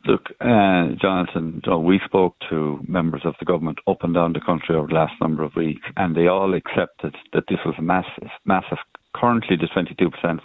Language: English